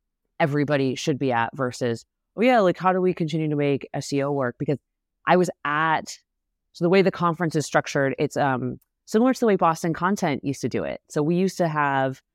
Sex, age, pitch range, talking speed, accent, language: female, 20-39, 130-165 Hz, 215 wpm, American, English